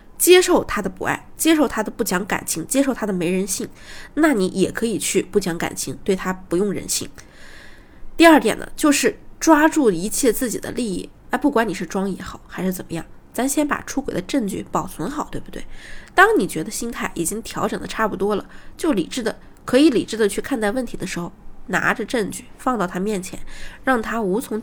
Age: 20-39